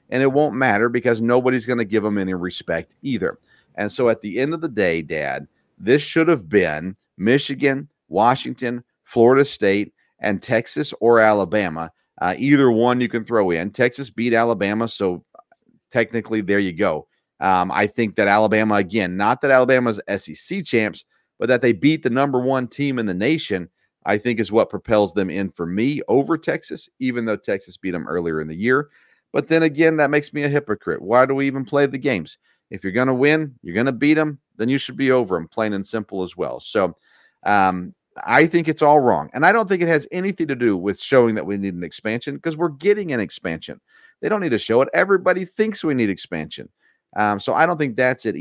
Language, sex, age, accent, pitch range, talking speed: English, male, 40-59, American, 100-140 Hz, 215 wpm